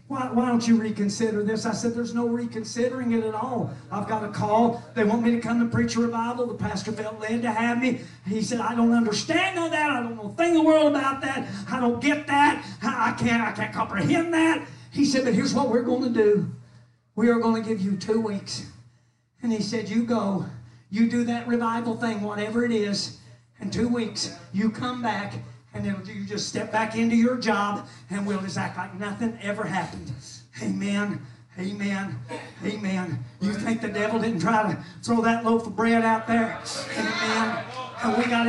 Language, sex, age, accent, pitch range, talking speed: English, male, 40-59, American, 205-235 Hz, 210 wpm